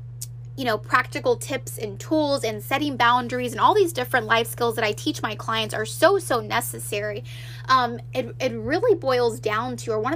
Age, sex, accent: 10-29, female, American